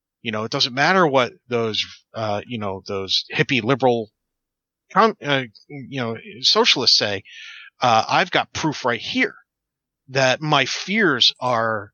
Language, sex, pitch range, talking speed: English, male, 115-150 Hz, 140 wpm